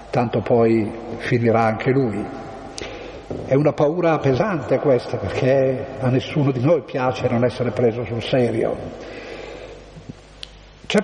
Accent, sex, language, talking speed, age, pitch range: native, male, Italian, 120 wpm, 50-69, 125-150 Hz